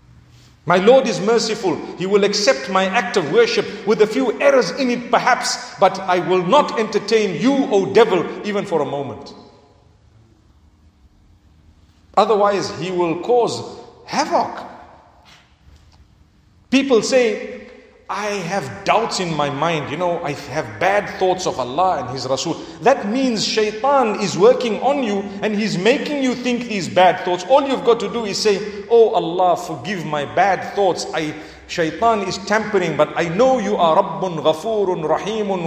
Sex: male